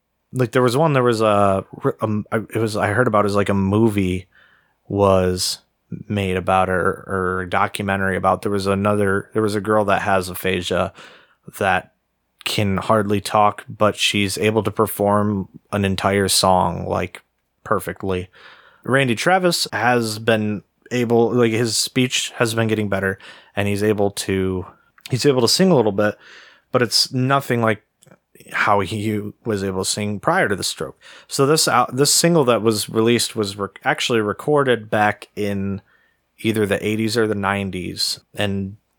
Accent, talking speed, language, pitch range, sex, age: American, 165 wpm, English, 100-115 Hz, male, 30-49